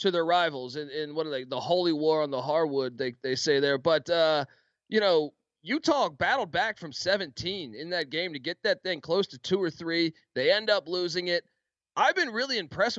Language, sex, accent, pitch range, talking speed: English, male, American, 145-205 Hz, 220 wpm